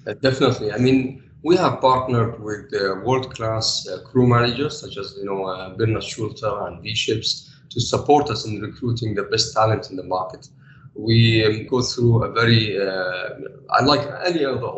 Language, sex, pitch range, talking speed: English, male, 110-135 Hz, 170 wpm